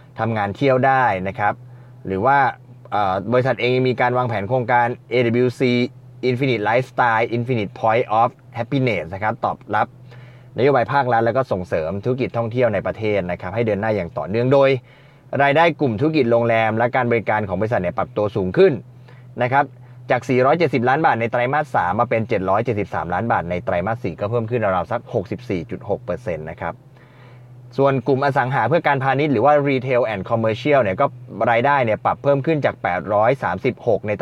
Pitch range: 115-135 Hz